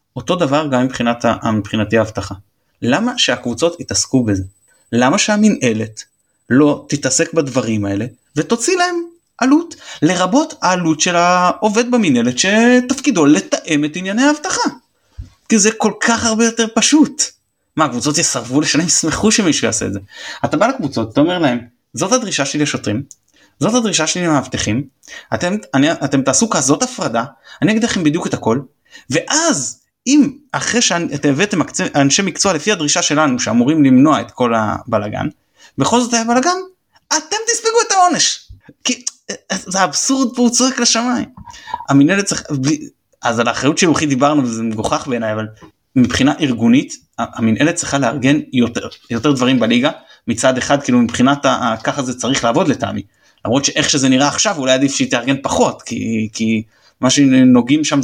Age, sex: 30-49, male